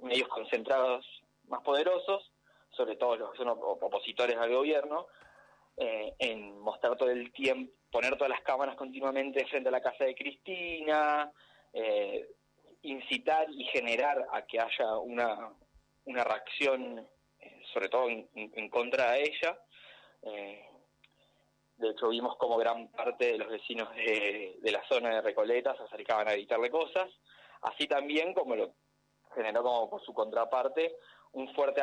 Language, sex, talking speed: Spanish, male, 150 wpm